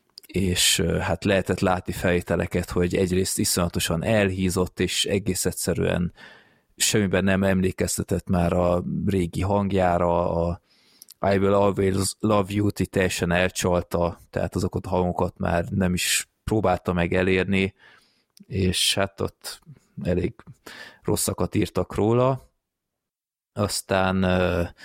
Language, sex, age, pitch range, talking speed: Hungarian, male, 20-39, 90-105 Hz, 105 wpm